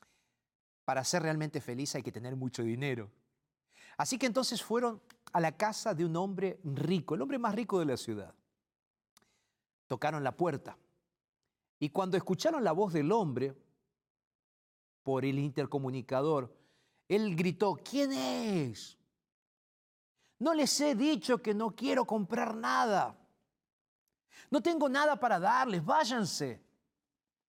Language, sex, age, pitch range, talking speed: Spanish, male, 50-69, 145-215 Hz, 130 wpm